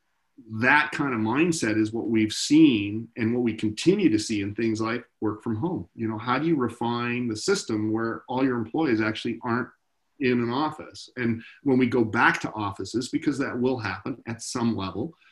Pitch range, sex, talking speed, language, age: 110-125 Hz, male, 200 wpm, English, 40-59